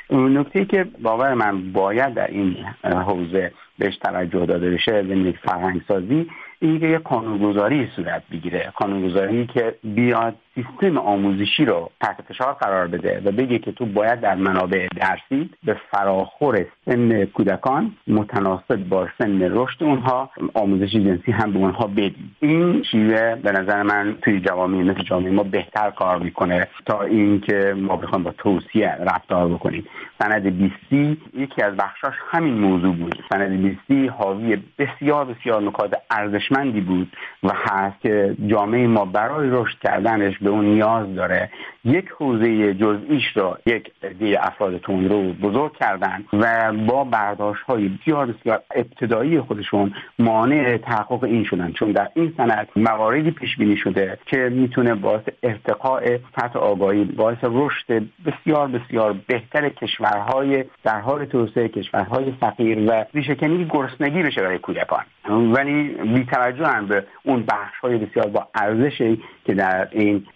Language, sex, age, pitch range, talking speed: English, male, 50-69, 100-125 Hz, 145 wpm